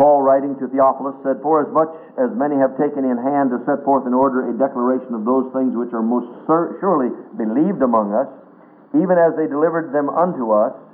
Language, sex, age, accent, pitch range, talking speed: English, male, 60-79, American, 135-165 Hz, 210 wpm